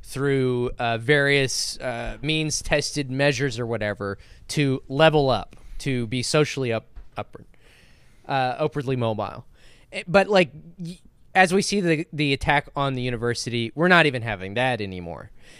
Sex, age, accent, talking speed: male, 20-39, American, 140 wpm